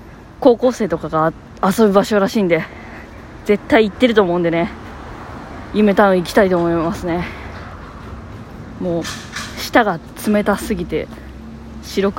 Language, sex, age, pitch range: Japanese, female, 20-39, 165-215 Hz